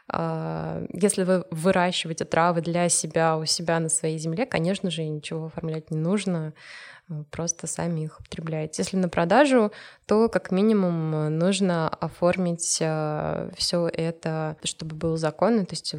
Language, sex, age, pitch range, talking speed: Russian, female, 20-39, 155-180 Hz, 135 wpm